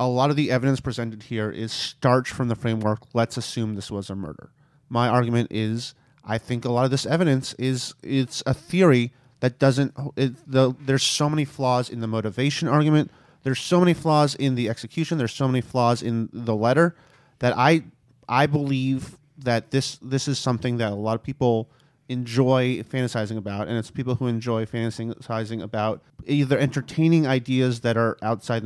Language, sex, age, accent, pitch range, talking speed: English, male, 30-49, American, 115-135 Hz, 185 wpm